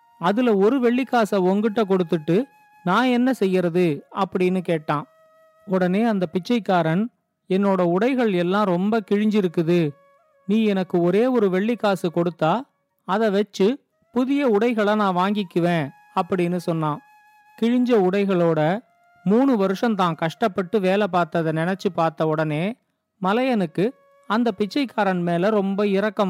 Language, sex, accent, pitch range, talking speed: Tamil, male, native, 180-235 Hz, 110 wpm